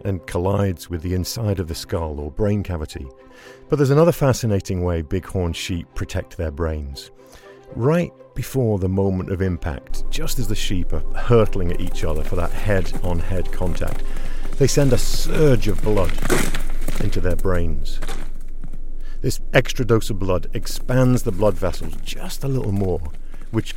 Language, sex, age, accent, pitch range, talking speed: English, male, 50-69, British, 90-130 Hz, 160 wpm